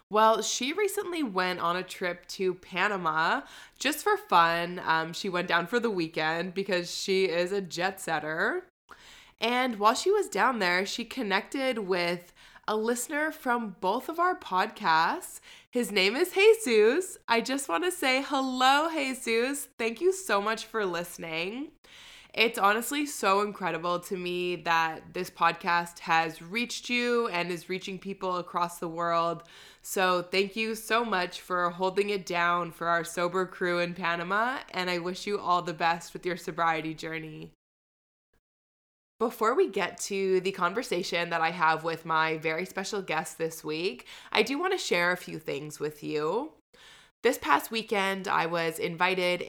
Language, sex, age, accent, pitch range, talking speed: English, female, 20-39, American, 170-230 Hz, 165 wpm